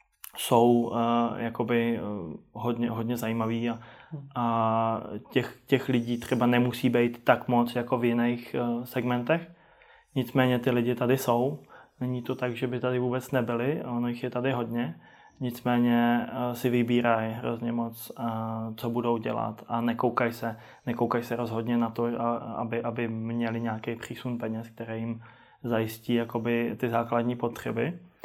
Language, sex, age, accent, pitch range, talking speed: Czech, male, 20-39, native, 115-120 Hz, 155 wpm